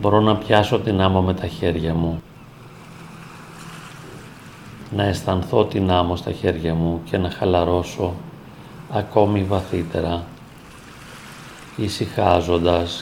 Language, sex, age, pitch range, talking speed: Greek, male, 40-59, 90-130 Hz, 100 wpm